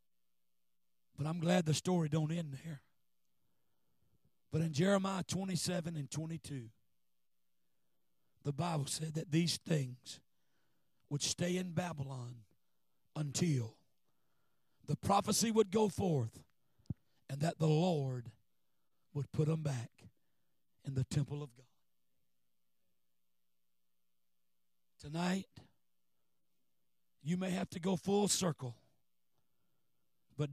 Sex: male